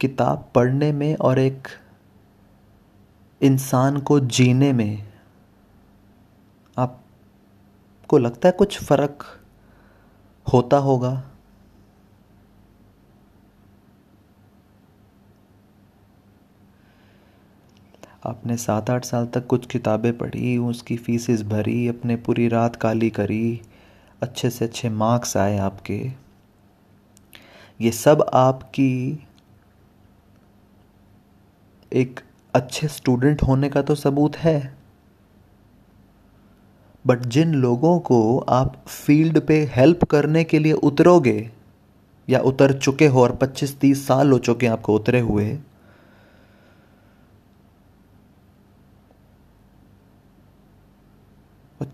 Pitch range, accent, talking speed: 100-130 Hz, native, 85 wpm